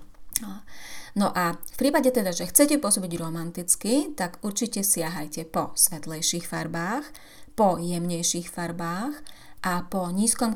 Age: 30-49